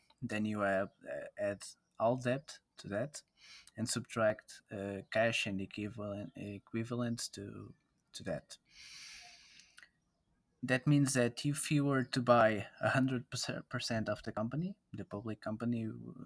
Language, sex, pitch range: English, male, 105-130 Hz